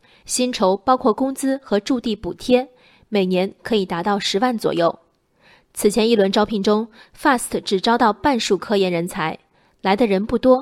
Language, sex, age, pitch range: Chinese, female, 20-39, 200-255 Hz